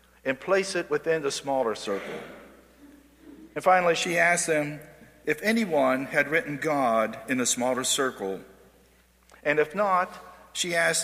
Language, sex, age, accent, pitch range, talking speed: English, male, 50-69, American, 125-165 Hz, 140 wpm